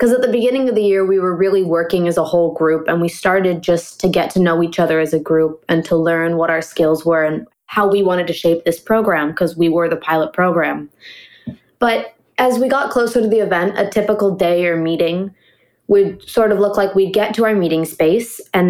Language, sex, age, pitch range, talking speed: English, female, 20-39, 165-200 Hz, 240 wpm